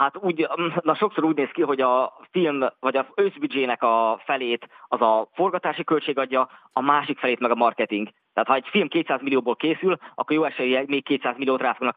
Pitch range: 120-155 Hz